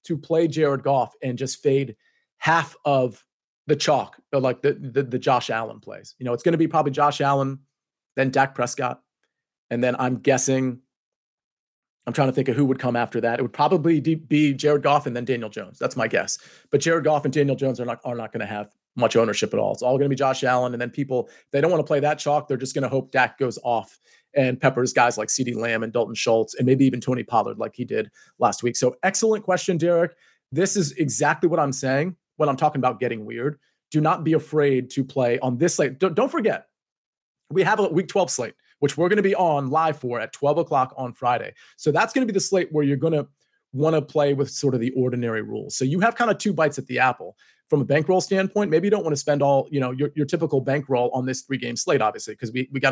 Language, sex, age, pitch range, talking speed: English, male, 30-49, 130-160 Hz, 250 wpm